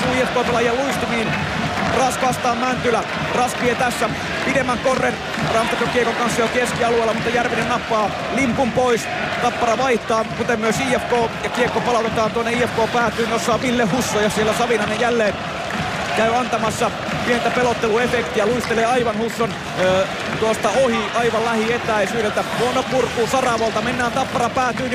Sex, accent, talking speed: male, native, 130 wpm